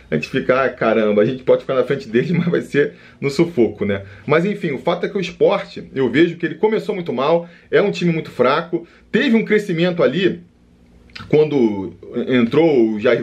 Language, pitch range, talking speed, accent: Portuguese, 115-180 Hz, 205 wpm, Brazilian